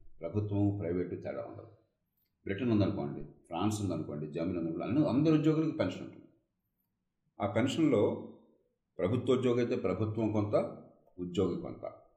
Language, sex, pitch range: Telugu, male, 100-140 Hz